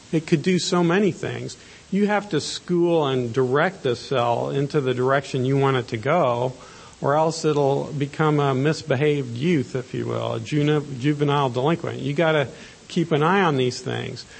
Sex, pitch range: male, 125-155 Hz